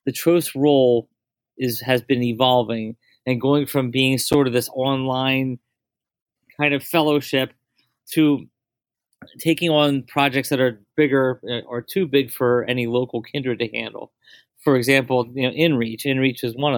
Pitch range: 120-135 Hz